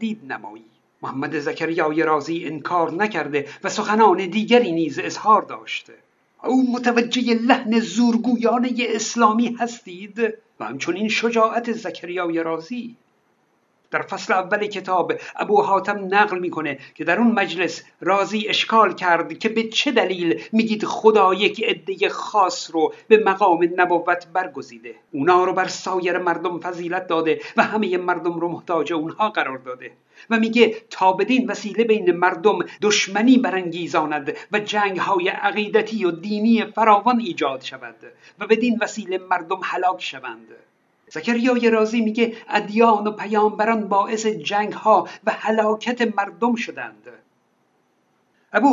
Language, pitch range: Persian, 175-230 Hz